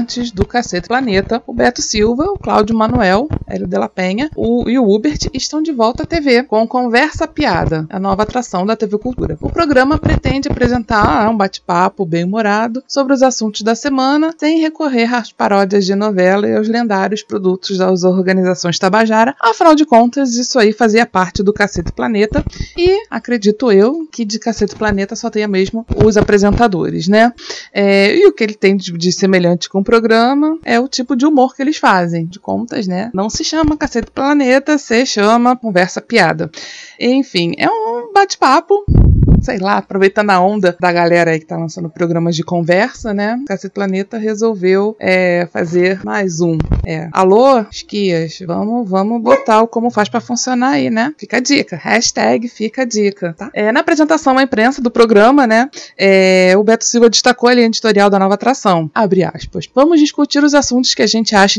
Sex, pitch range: female, 195-255 Hz